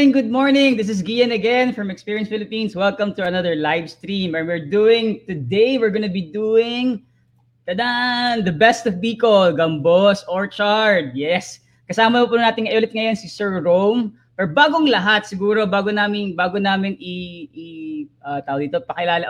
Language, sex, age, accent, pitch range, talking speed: English, female, 20-39, Filipino, 170-225 Hz, 170 wpm